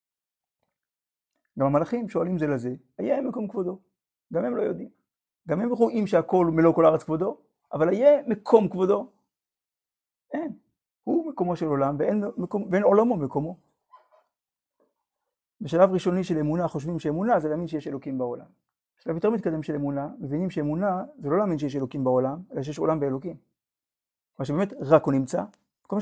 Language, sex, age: Hebrew, male, 50-69